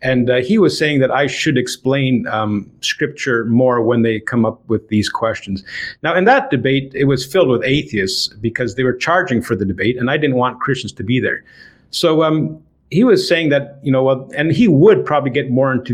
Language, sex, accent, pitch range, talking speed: English, male, American, 120-150 Hz, 220 wpm